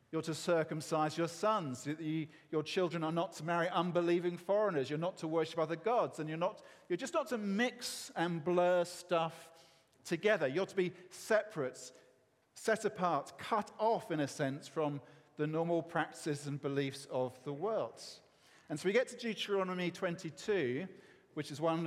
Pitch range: 145-185 Hz